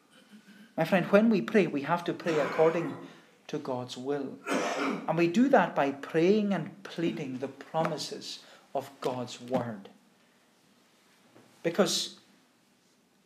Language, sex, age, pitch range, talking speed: English, male, 40-59, 140-200 Hz, 120 wpm